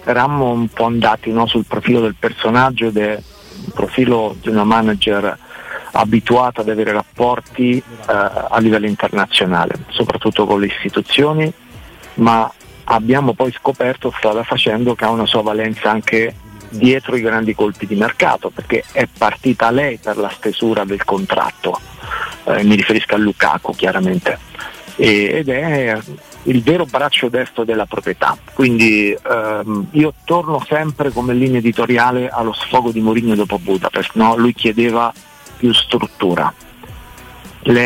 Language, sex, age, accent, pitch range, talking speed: Italian, male, 50-69, native, 110-125 Hz, 140 wpm